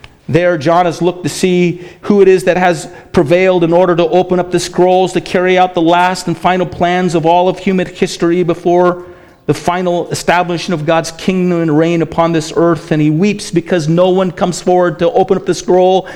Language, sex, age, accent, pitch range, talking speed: English, male, 50-69, American, 155-195 Hz, 210 wpm